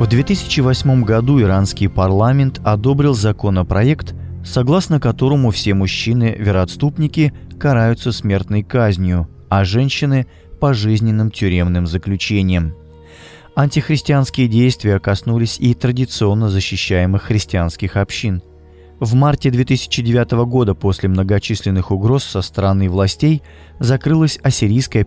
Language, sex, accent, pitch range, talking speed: Russian, male, native, 95-125 Hz, 95 wpm